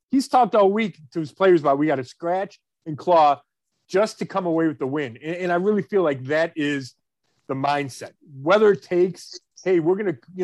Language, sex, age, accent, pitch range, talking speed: English, male, 40-59, American, 150-190 Hz, 225 wpm